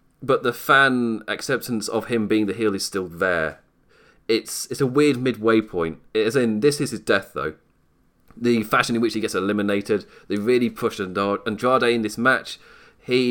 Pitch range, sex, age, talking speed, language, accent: 105-145 Hz, male, 30-49, 185 wpm, English, British